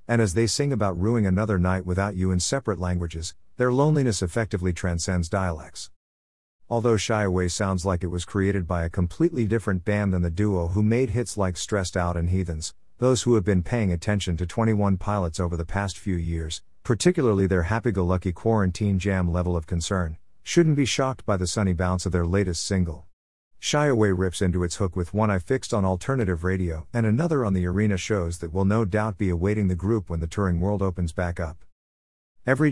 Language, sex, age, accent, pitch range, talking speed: English, male, 50-69, American, 90-110 Hz, 200 wpm